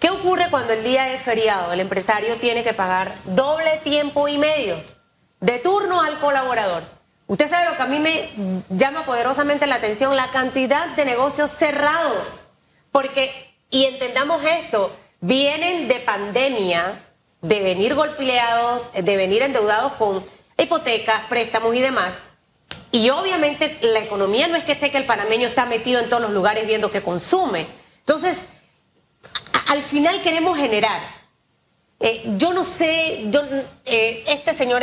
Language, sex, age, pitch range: Spanish, female, 30-49, 215-300 Hz